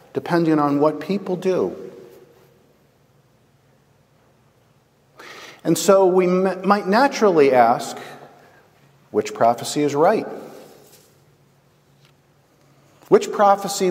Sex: male